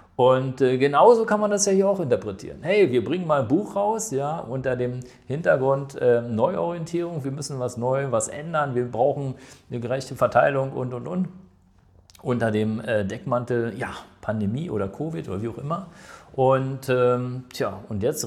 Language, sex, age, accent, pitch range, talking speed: German, male, 50-69, German, 120-160 Hz, 175 wpm